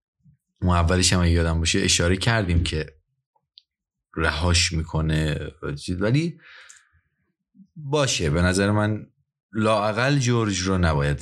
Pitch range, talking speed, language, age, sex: 90-135 Hz, 95 wpm, Persian, 30-49, male